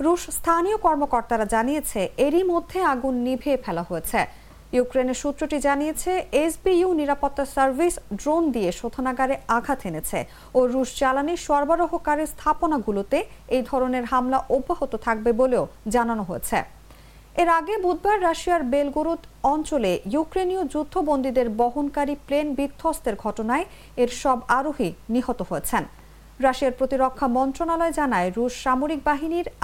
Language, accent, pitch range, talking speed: English, Indian, 240-315 Hz, 105 wpm